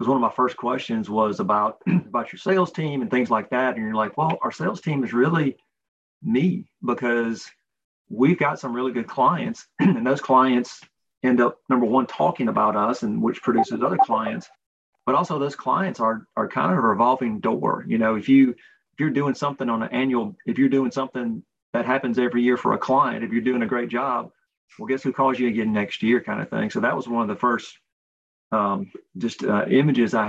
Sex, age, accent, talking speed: male, 40-59, American, 220 wpm